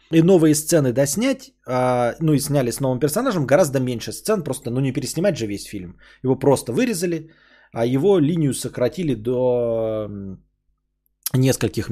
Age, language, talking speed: 20-39, Bulgarian, 145 wpm